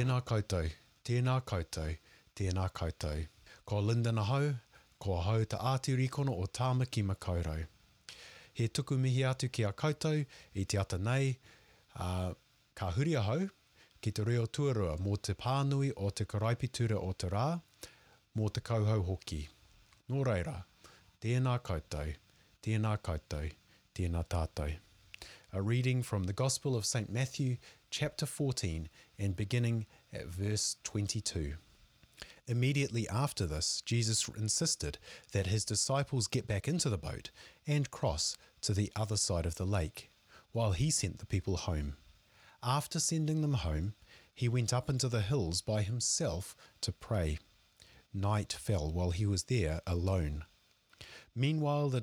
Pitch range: 95-125 Hz